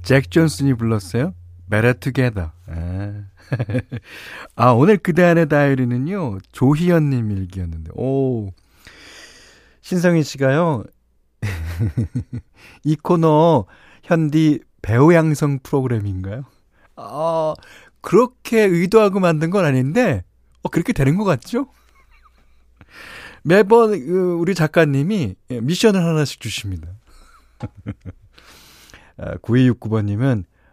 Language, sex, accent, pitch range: Korean, male, native, 105-160 Hz